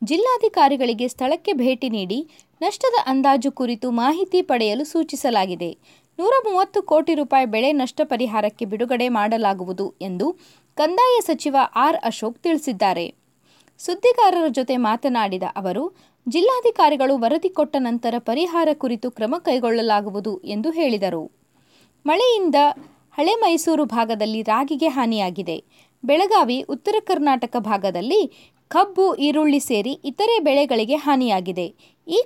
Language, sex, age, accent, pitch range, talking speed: Kannada, female, 20-39, native, 230-335 Hz, 105 wpm